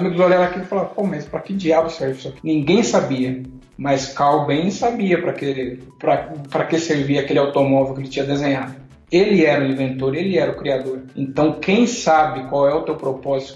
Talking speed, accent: 195 wpm, Brazilian